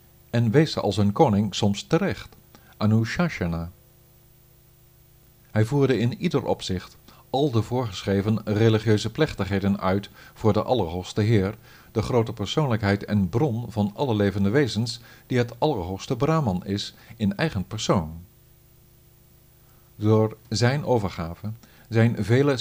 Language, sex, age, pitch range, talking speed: Dutch, male, 50-69, 105-125 Hz, 120 wpm